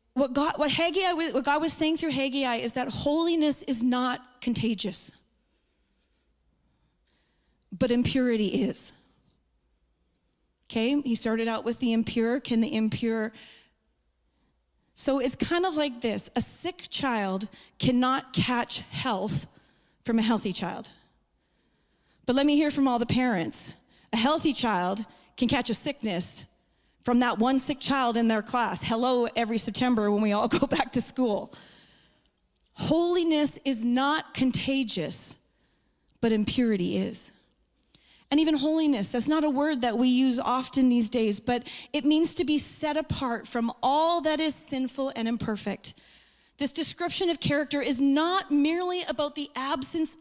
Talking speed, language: 140 wpm, English